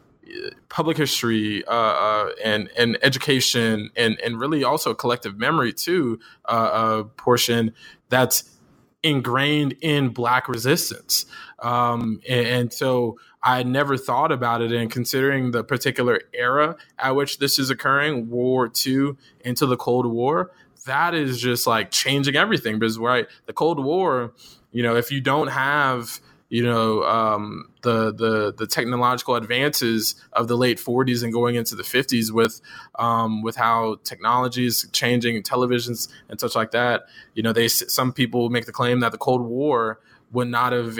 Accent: American